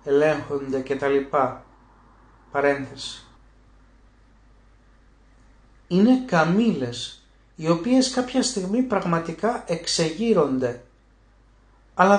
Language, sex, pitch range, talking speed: Greek, male, 130-195 Hz, 70 wpm